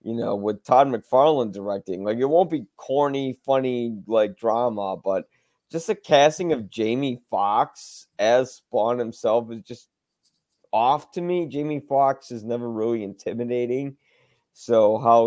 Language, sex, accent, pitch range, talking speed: English, male, American, 115-140 Hz, 145 wpm